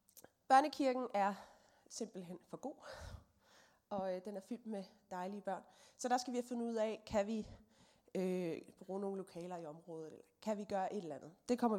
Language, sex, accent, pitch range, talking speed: Danish, female, native, 195-255 Hz, 190 wpm